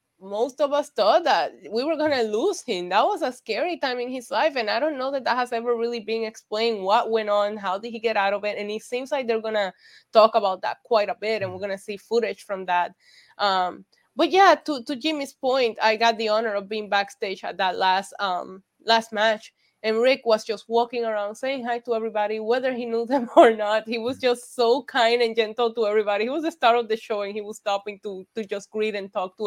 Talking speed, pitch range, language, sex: 250 wpm, 190-240 Hz, English, female